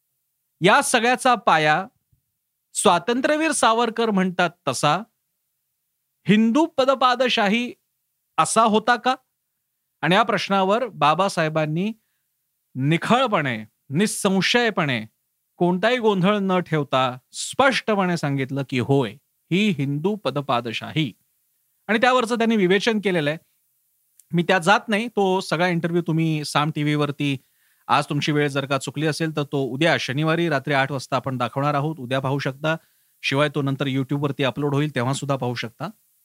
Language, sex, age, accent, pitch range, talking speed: Marathi, male, 40-59, native, 140-215 Hz, 85 wpm